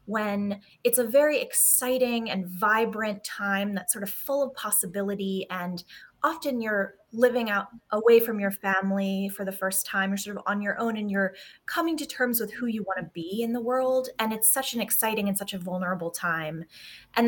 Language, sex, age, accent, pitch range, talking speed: English, female, 20-39, American, 195-240 Hz, 200 wpm